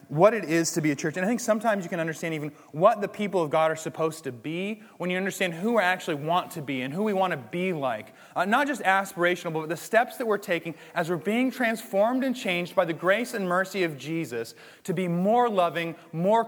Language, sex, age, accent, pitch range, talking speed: English, male, 30-49, American, 170-220 Hz, 250 wpm